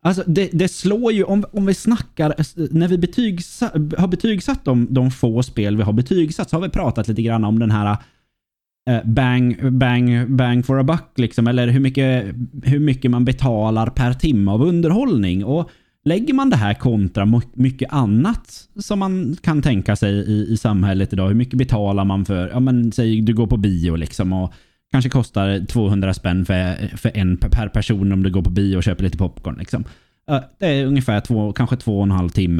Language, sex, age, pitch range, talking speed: Swedish, male, 20-39, 100-135 Hz, 200 wpm